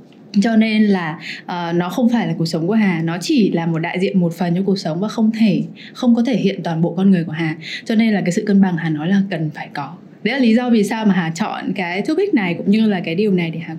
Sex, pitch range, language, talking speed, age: female, 180-225 Hz, Vietnamese, 295 wpm, 20-39